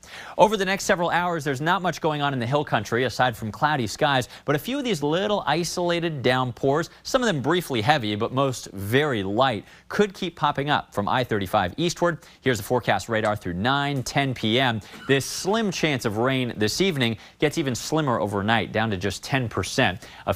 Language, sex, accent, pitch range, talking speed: English, male, American, 110-155 Hz, 195 wpm